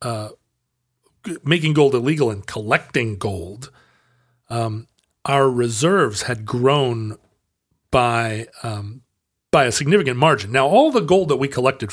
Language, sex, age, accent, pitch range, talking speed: English, male, 40-59, American, 105-140 Hz, 125 wpm